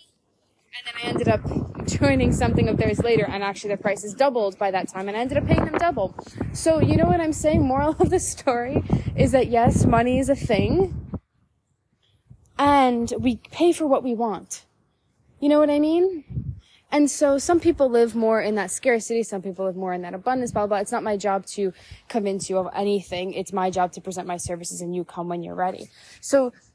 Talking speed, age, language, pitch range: 215 wpm, 20-39, English, 205-275 Hz